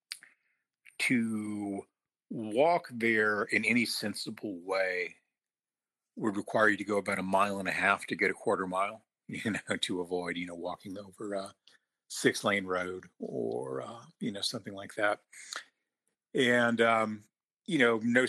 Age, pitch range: 50-69, 95-115 Hz